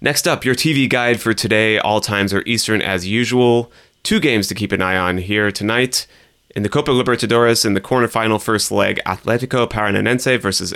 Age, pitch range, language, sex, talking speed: 30-49, 95-120 Hz, English, male, 195 wpm